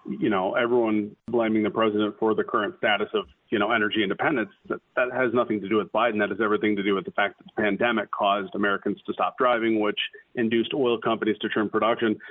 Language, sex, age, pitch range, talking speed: English, male, 40-59, 110-125 Hz, 225 wpm